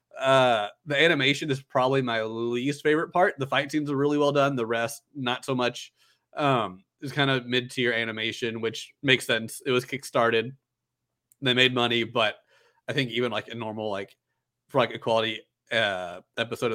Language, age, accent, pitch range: English, 30-49, American, 115-135 Hz